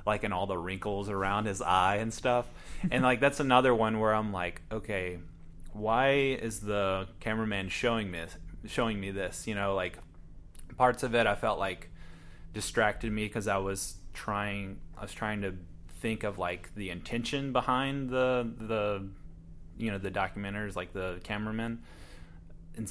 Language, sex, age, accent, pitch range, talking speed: English, male, 20-39, American, 85-105 Hz, 165 wpm